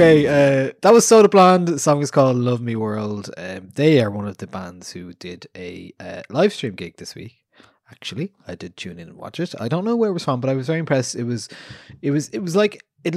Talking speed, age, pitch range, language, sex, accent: 260 wpm, 20-39, 105-155 Hz, English, male, Irish